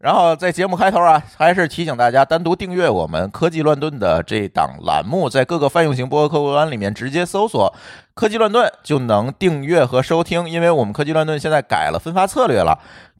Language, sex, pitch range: Chinese, male, 125-165 Hz